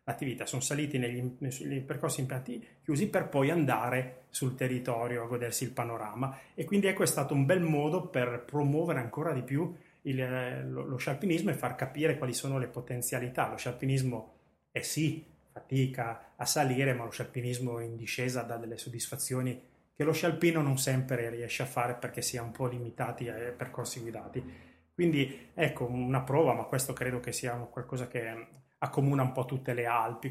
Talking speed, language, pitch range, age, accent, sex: 180 wpm, Italian, 120-140 Hz, 30-49, native, male